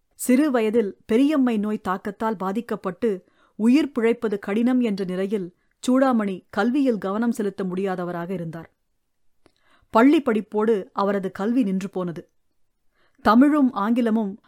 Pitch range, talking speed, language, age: 190-245 Hz, 100 wpm, English, 30-49